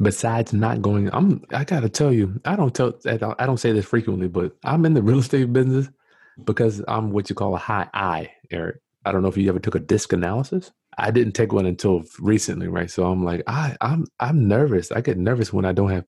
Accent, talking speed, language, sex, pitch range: American, 245 wpm, English, male, 95-120 Hz